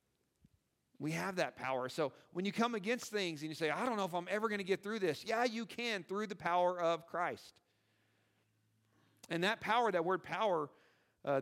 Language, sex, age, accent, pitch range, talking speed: English, male, 40-59, American, 115-175 Hz, 205 wpm